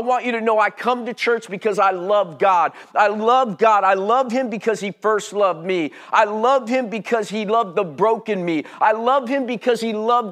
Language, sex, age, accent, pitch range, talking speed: English, male, 50-69, American, 185-235 Hz, 225 wpm